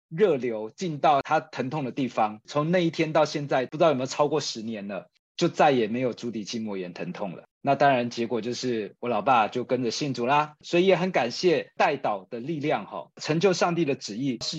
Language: Chinese